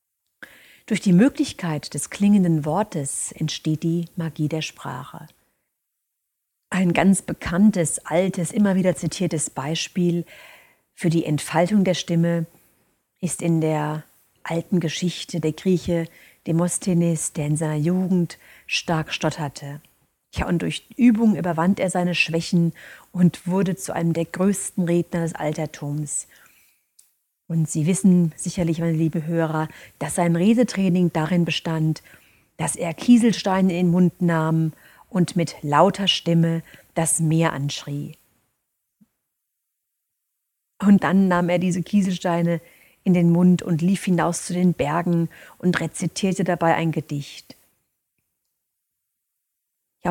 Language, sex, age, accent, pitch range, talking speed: German, female, 40-59, German, 160-185 Hz, 120 wpm